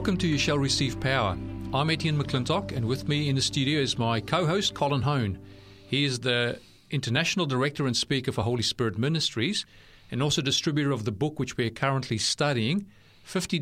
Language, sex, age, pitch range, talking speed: English, male, 40-59, 110-140 Hz, 190 wpm